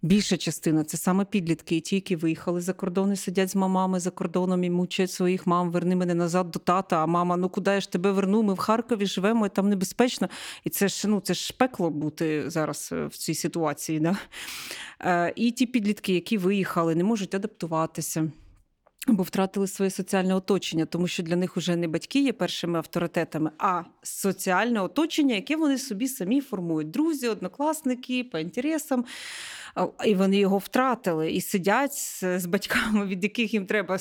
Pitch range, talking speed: 175-210 Hz, 180 wpm